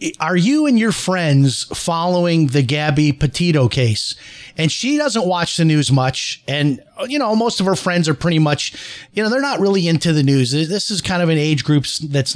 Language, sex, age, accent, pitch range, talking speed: English, male, 30-49, American, 145-180 Hz, 210 wpm